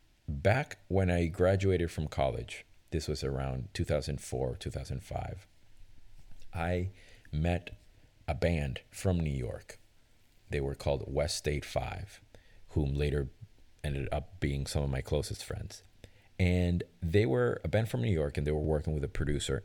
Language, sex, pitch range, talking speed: English, male, 75-95 Hz, 150 wpm